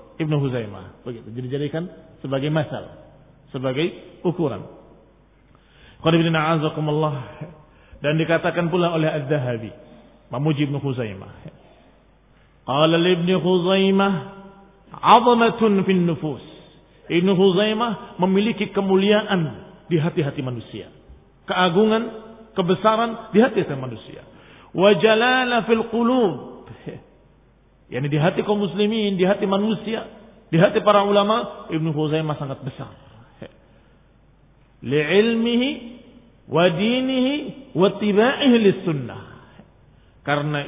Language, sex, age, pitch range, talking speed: Indonesian, male, 40-59, 150-210 Hz, 85 wpm